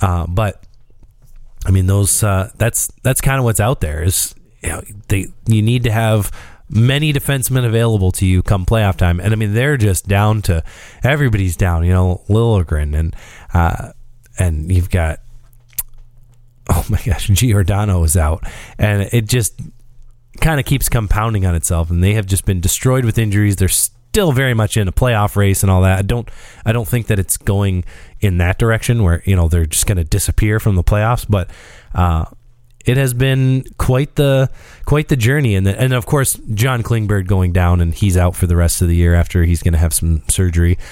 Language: English